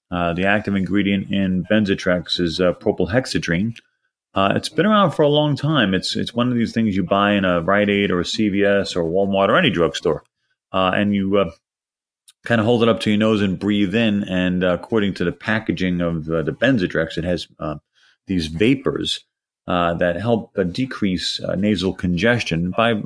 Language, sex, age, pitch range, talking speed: English, male, 40-59, 90-110 Hz, 200 wpm